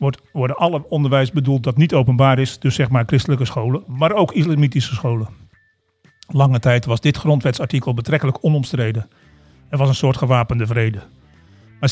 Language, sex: Dutch, male